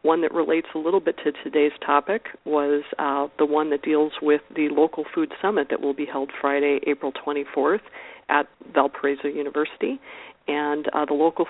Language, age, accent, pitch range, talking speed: English, 50-69, American, 145-160 Hz, 175 wpm